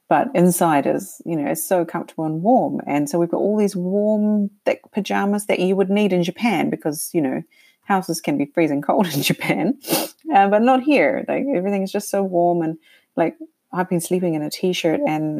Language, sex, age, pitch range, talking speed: English, female, 30-49, 160-210 Hz, 210 wpm